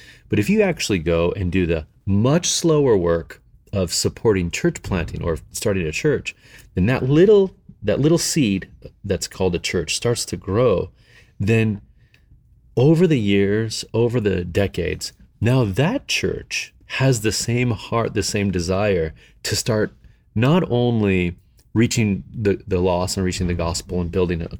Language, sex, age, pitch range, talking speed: English, male, 30-49, 90-120 Hz, 155 wpm